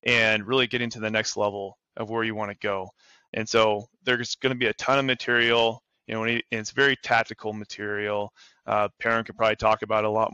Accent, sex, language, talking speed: American, male, English, 210 wpm